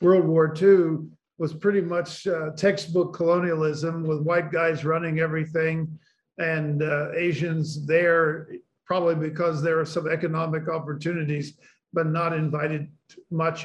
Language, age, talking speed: English, 50-69, 130 wpm